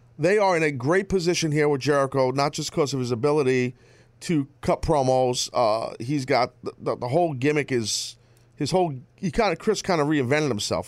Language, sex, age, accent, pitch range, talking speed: English, male, 40-59, American, 125-170 Hz, 205 wpm